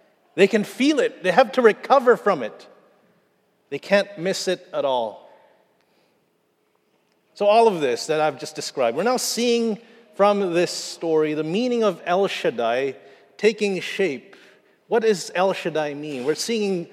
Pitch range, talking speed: 150-200 Hz, 155 wpm